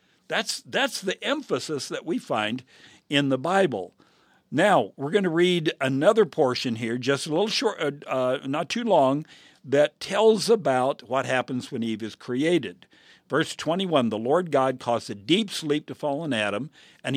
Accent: American